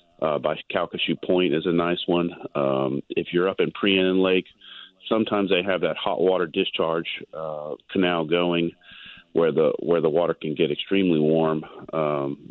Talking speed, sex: 170 wpm, male